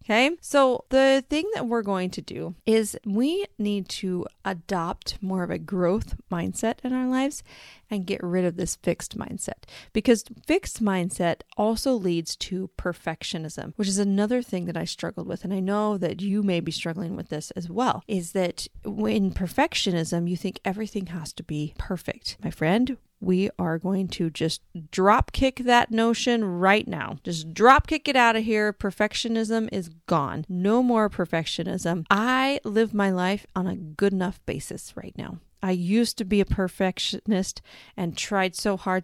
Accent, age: American, 30-49